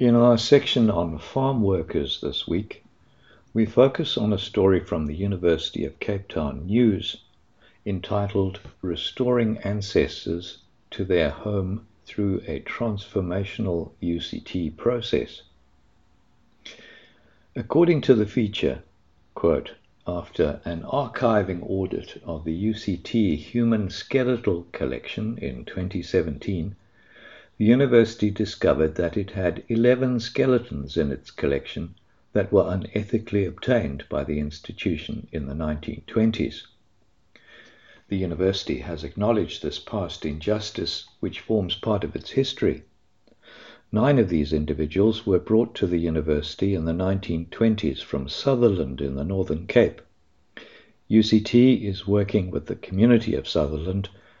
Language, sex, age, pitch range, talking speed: English, male, 60-79, 85-115 Hz, 120 wpm